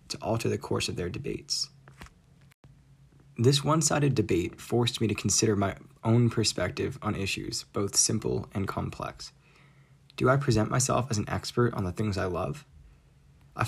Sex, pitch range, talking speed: male, 110-140 Hz, 160 wpm